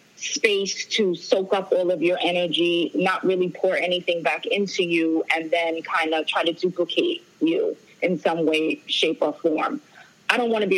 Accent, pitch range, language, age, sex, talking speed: American, 175-225 Hz, English, 20-39, female, 190 wpm